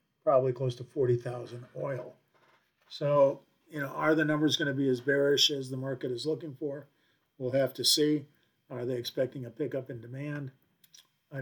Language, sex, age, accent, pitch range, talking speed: English, male, 50-69, American, 130-150 Hz, 180 wpm